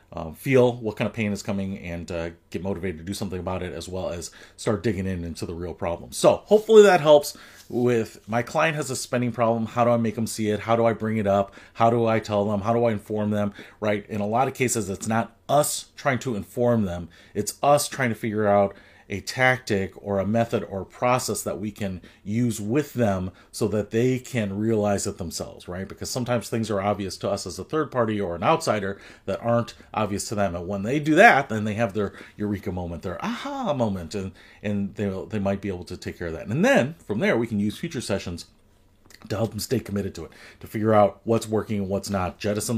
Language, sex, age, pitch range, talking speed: English, male, 30-49, 100-115 Hz, 240 wpm